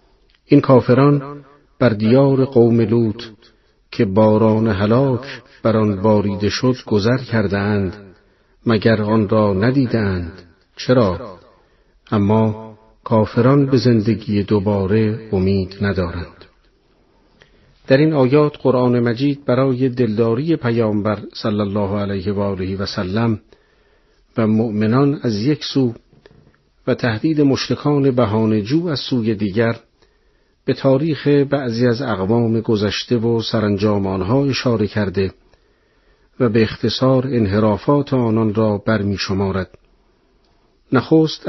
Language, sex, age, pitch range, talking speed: Persian, male, 50-69, 105-130 Hz, 105 wpm